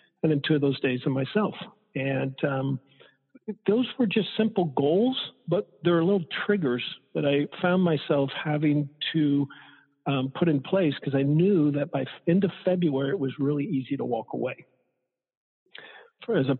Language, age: English, 50-69